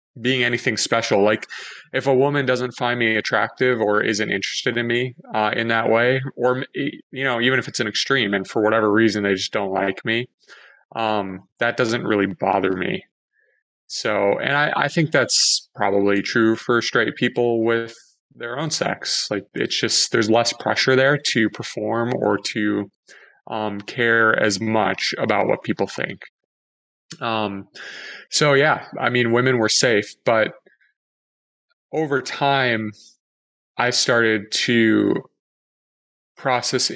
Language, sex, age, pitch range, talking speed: English, male, 20-39, 100-125 Hz, 150 wpm